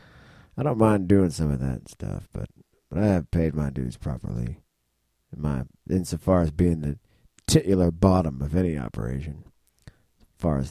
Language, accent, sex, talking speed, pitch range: English, American, male, 170 wpm, 75-95 Hz